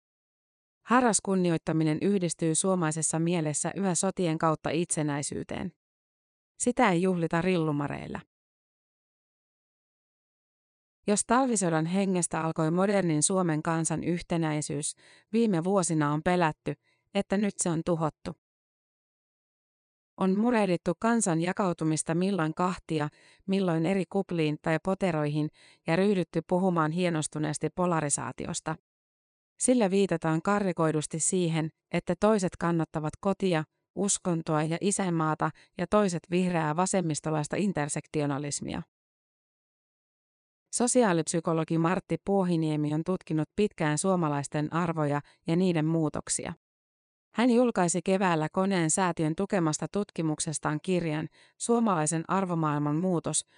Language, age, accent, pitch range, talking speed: Finnish, 30-49, native, 155-190 Hz, 95 wpm